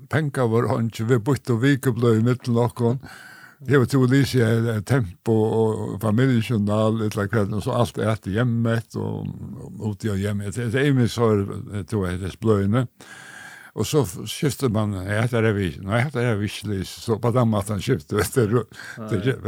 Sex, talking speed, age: male, 215 wpm, 60-79